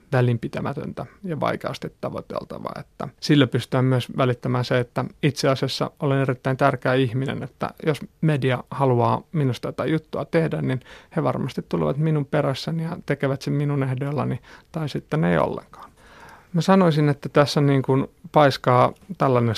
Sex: male